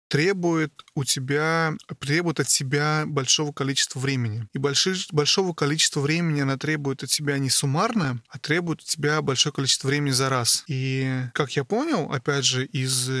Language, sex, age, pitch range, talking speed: Russian, male, 20-39, 135-155 Hz, 150 wpm